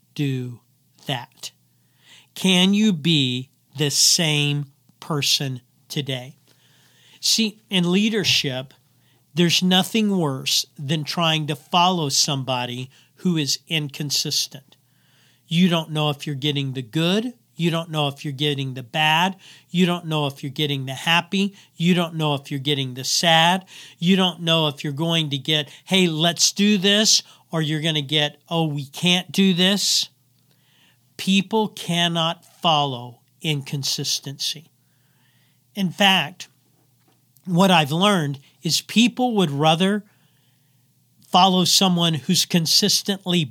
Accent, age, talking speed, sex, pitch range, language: American, 50-69, 130 wpm, male, 140-175 Hz, English